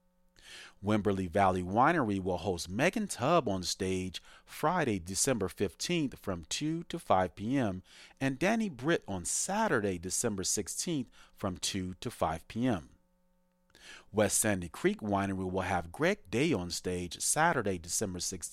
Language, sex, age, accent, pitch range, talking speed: English, male, 40-59, American, 90-130 Hz, 135 wpm